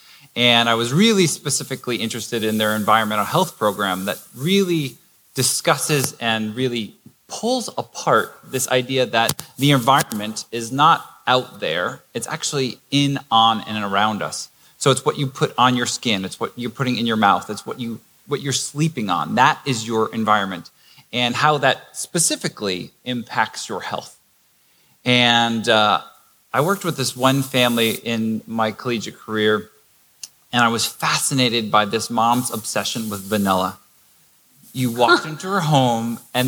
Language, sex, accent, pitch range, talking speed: English, male, American, 115-140 Hz, 155 wpm